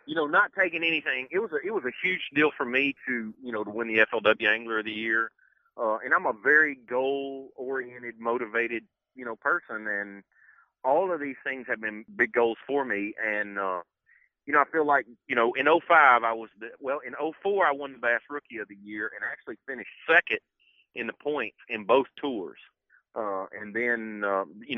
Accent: American